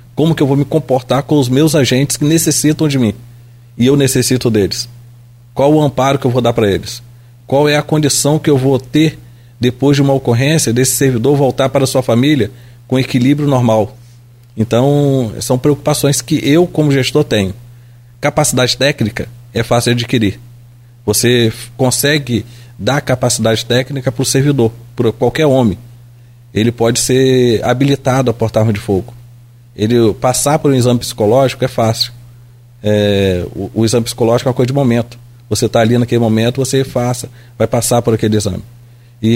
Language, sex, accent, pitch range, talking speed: Portuguese, male, Brazilian, 115-130 Hz, 170 wpm